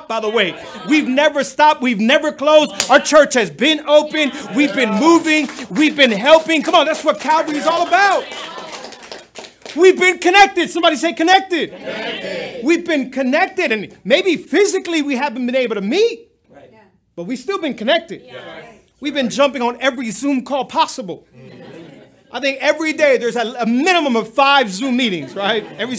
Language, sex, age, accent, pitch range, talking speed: English, male, 40-59, American, 225-295 Hz, 170 wpm